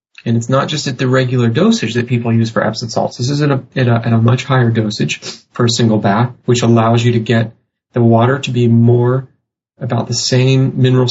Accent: American